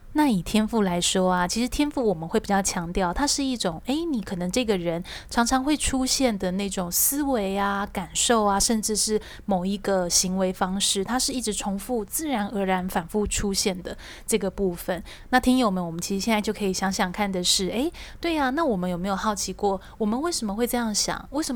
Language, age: Chinese, 20-39